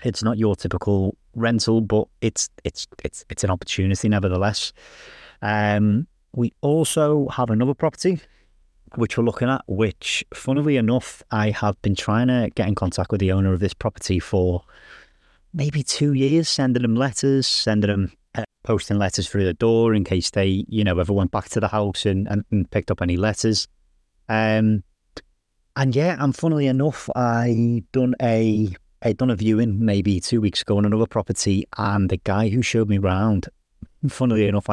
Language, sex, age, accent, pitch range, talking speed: English, male, 30-49, British, 95-115 Hz, 175 wpm